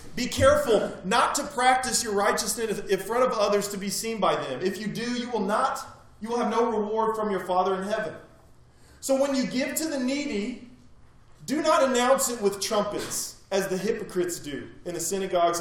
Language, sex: English, male